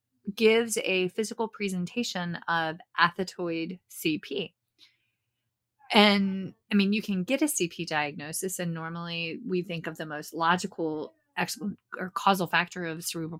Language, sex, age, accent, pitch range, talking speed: English, female, 30-49, American, 170-205 Hz, 130 wpm